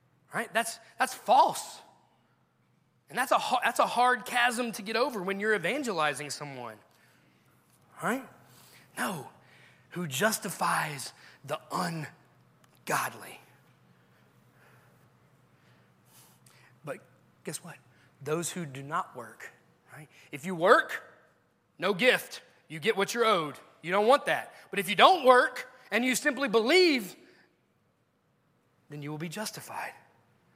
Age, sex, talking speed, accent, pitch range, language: 30-49, male, 120 wpm, American, 145-215 Hz, English